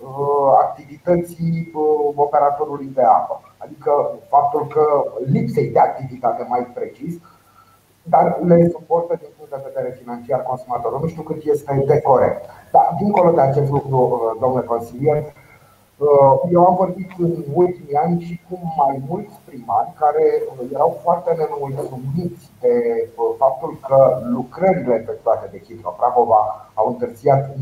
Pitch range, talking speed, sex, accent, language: 125-160 Hz, 125 wpm, male, native, Romanian